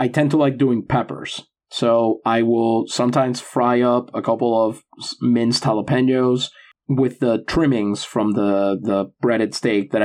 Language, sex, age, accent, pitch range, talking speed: English, male, 30-49, American, 110-130 Hz, 155 wpm